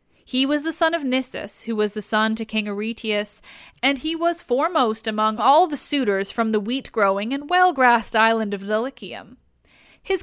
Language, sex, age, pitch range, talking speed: English, female, 10-29, 210-300 Hz, 180 wpm